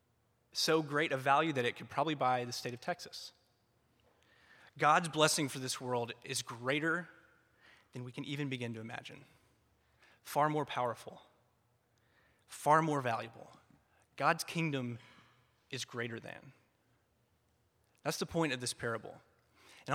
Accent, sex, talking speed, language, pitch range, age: American, male, 135 wpm, English, 120-150 Hz, 20-39